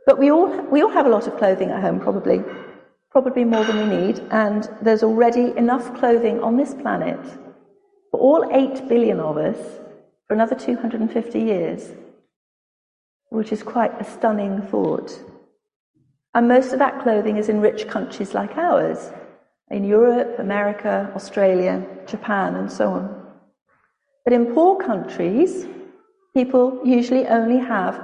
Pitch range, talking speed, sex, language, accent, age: 215-265 Hz, 150 wpm, female, English, British, 40-59